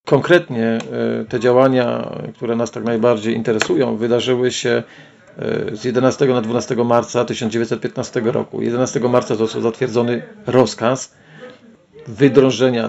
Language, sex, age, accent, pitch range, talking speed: Polish, male, 40-59, native, 120-140 Hz, 105 wpm